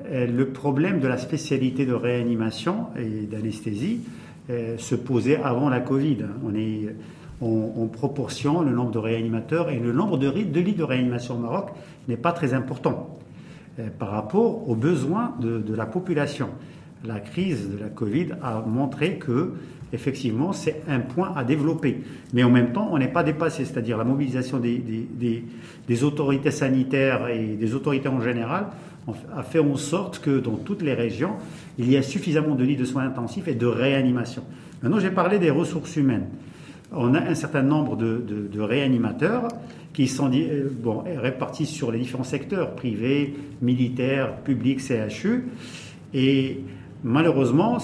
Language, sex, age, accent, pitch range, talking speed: French, male, 50-69, French, 120-155 Hz, 165 wpm